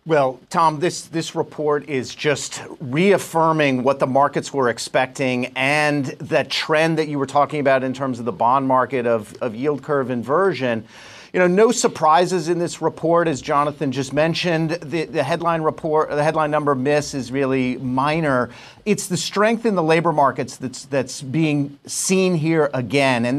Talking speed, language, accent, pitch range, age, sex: 175 wpm, English, American, 140-180 Hz, 40-59, male